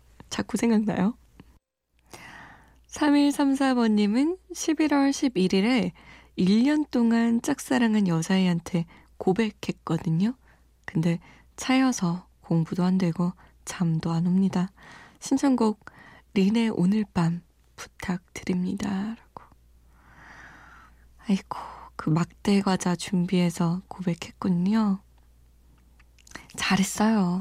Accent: native